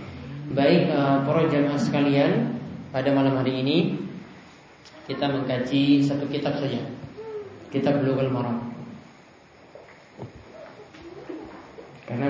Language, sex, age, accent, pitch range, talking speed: English, male, 20-39, Indonesian, 135-165 Hz, 85 wpm